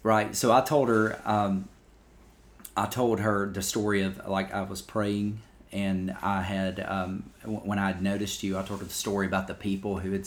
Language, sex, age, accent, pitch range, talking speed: English, male, 30-49, American, 95-105 Hz, 210 wpm